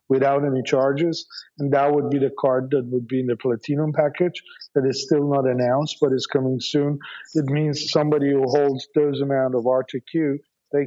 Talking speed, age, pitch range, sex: 195 wpm, 50-69, 130-150 Hz, male